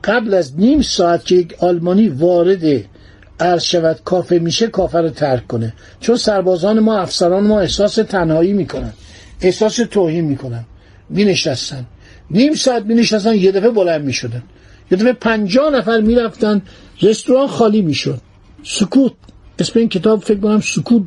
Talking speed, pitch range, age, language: 140 wpm, 135-215 Hz, 60-79, Persian